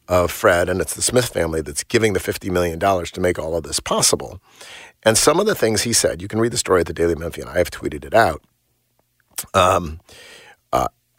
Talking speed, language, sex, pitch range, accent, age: 230 wpm, English, male, 90-115 Hz, American, 50-69